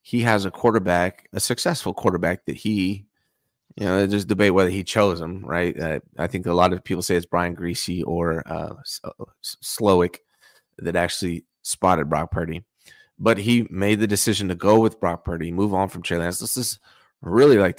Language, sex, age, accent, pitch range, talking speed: English, male, 30-49, American, 90-110 Hz, 190 wpm